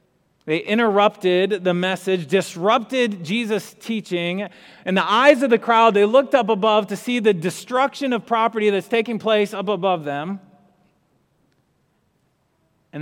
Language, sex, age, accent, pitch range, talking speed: English, male, 30-49, American, 155-200 Hz, 140 wpm